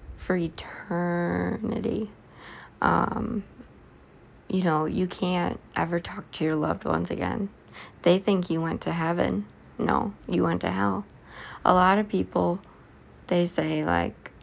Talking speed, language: 135 wpm, English